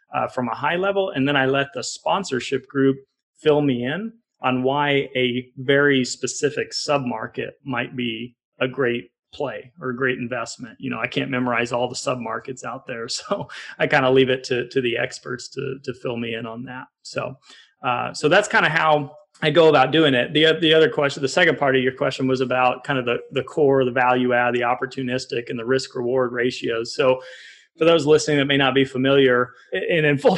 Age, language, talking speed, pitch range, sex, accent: 30-49, English, 215 wpm, 125-140 Hz, male, American